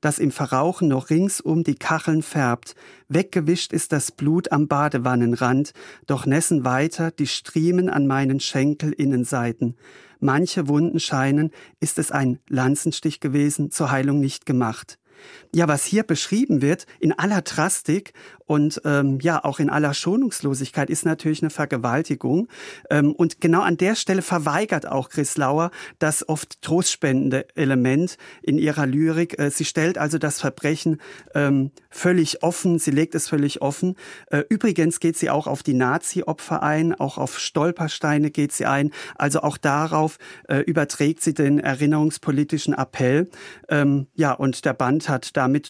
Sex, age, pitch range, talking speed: male, 40-59, 140-165 Hz, 150 wpm